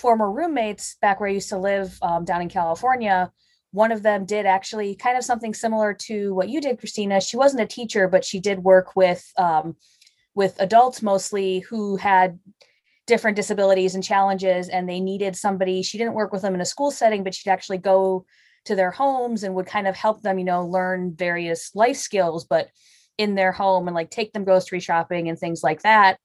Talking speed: 210 wpm